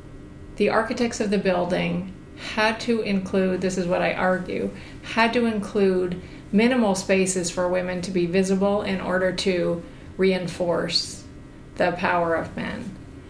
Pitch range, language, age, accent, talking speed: 175-195 Hz, English, 30-49, American, 130 wpm